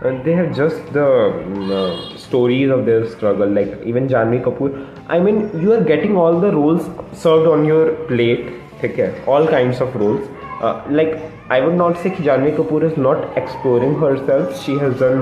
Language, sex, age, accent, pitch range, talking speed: Hindi, male, 20-39, native, 120-165 Hz, 195 wpm